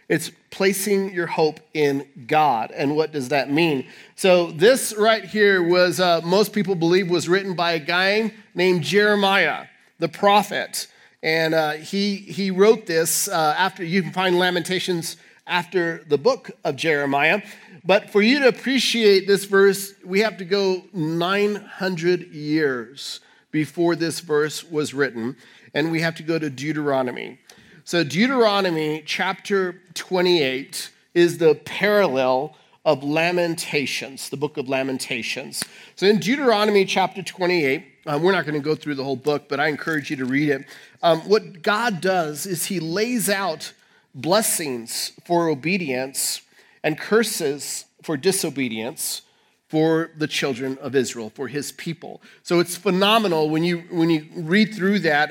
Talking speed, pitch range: 150 wpm, 155-195 Hz